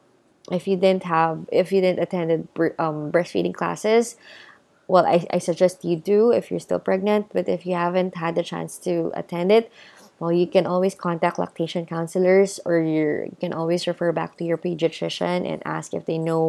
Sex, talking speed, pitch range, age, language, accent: female, 195 wpm, 170-220 Hz, 20-39, English, Filipino